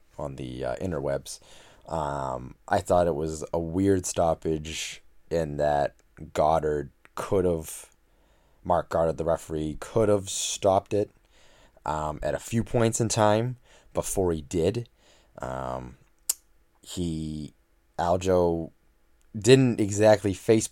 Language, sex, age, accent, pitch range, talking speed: English, male, 20-39, American, 75-95 Hz, 120 wpm